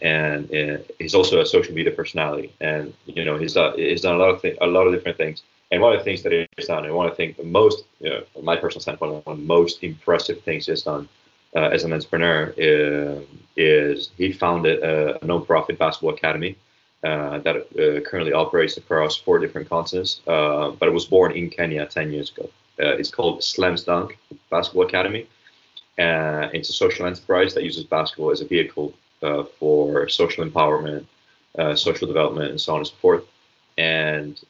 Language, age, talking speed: English, 30-49, 205 wpm